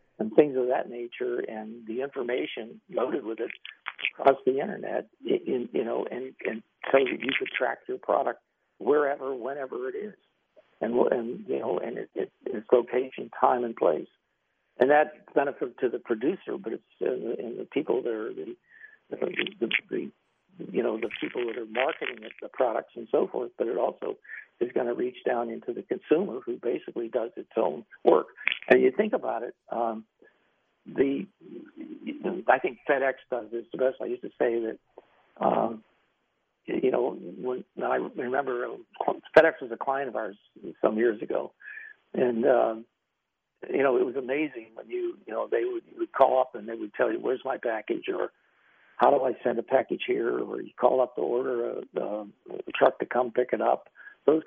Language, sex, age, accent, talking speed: English, male, 60-79, American, 195 wpm